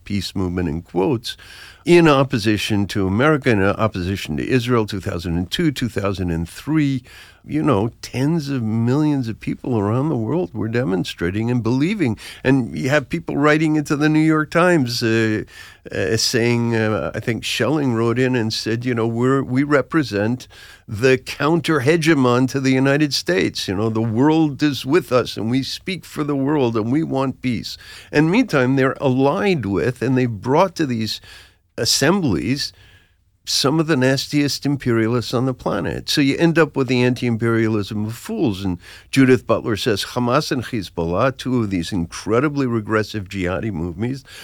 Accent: American